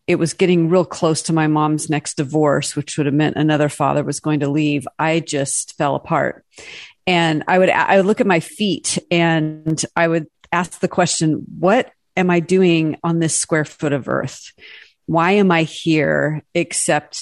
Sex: female